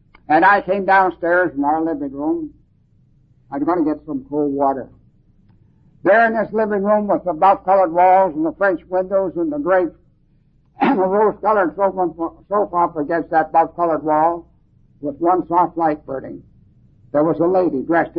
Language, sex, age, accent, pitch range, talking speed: English, male, 60-79, American, 155-200 Hz, 170 wpm